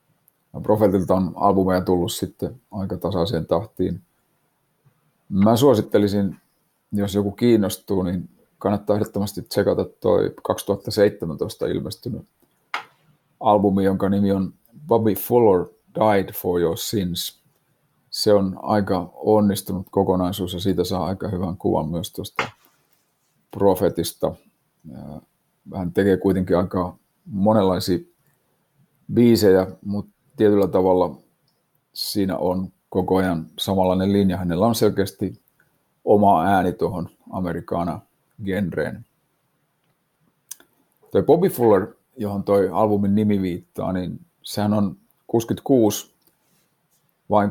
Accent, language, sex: native, Finnish, male